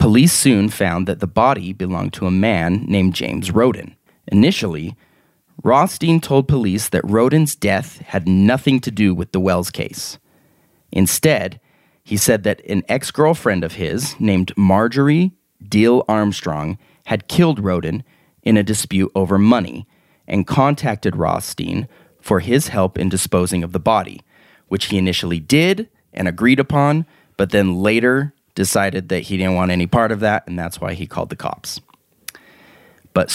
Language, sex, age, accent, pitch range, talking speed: English, male, 30-49, American, 90-120 Hz, 155 wpm